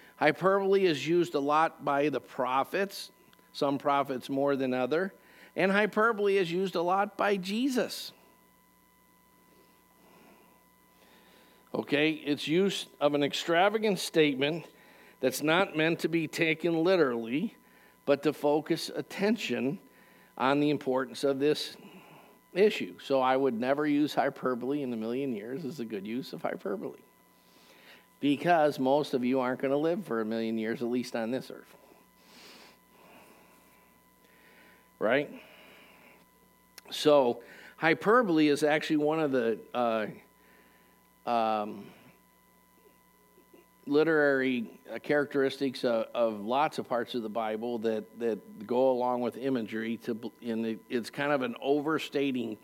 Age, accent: 50-69, American